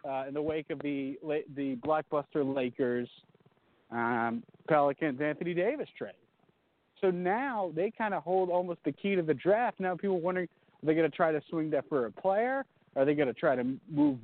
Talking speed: 200 wpm